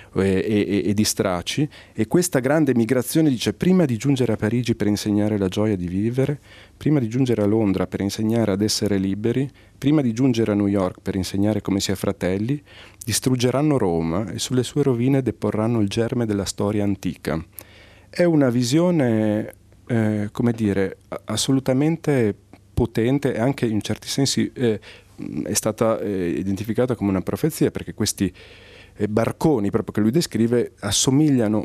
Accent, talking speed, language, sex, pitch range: native, 160 wpm, Italian, male, 95-125 Hz